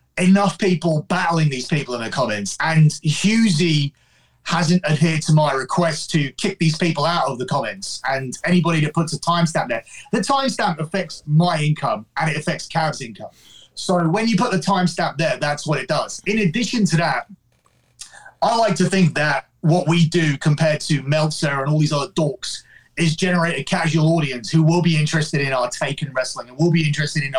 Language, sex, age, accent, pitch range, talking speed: English, male, 30-49, British, 150-175 Hz, 195 wpm